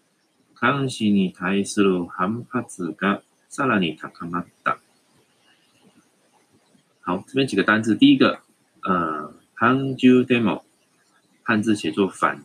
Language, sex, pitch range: Chinese, male, 85-110 Hz